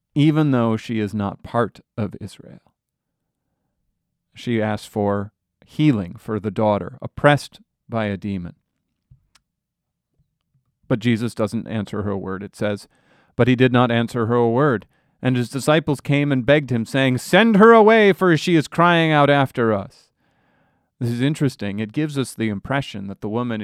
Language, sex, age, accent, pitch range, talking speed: English, male, 40-59, American, 110-145 Hz, 160 wpm